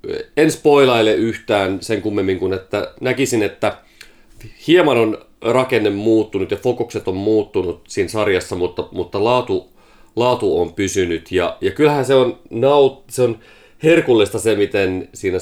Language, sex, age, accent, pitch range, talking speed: Finnish, male, 30-49, native, 95-150 Hz, 145 wpm